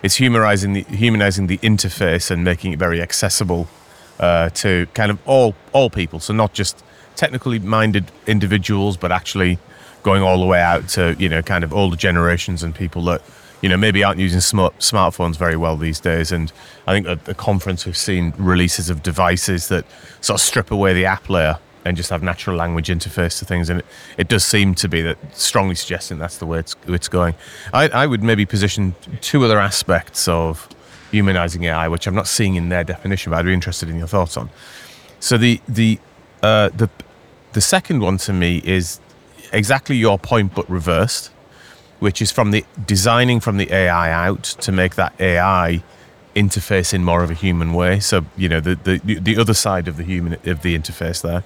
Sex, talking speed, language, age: male, 200 wpm, English, 30-49